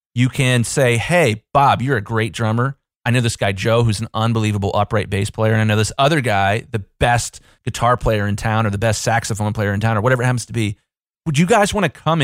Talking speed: 250 wpm